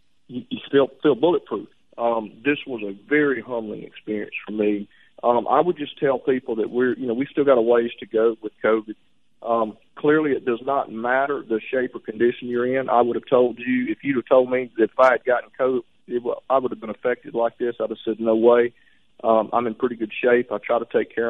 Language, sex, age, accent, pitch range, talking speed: English, male, 40-59, American, 110-125 Hz, 240 wpm